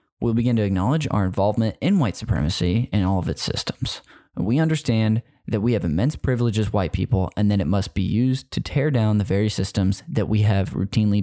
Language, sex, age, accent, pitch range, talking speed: English, male, 10-29, American, 100-125 Hz, 215 wpm